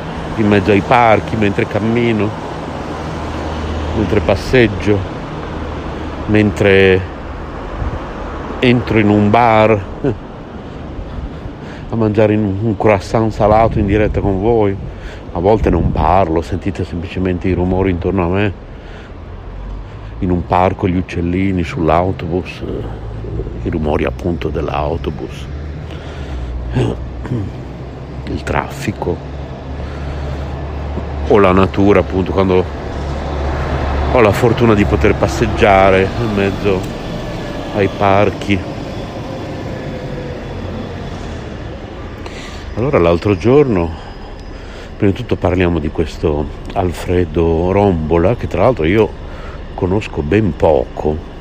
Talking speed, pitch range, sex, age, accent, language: 90 wpm, 80-100 Hz, male, 60-79, native, Italian